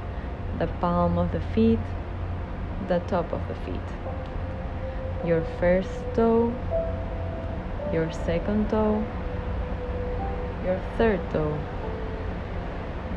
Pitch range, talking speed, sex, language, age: 85-100 Hz, 85 wpm, female, English, 20-39